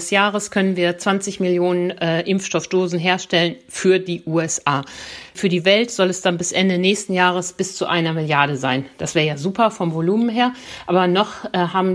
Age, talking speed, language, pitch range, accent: 50-69, 190 wpm, German, 165-185 Hz, German